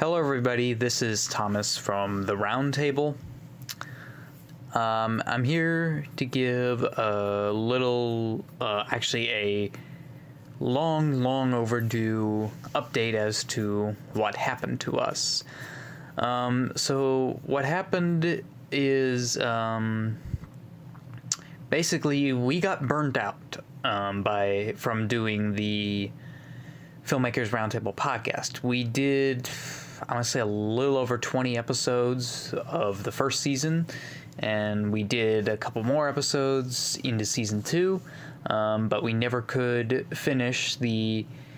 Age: 20-39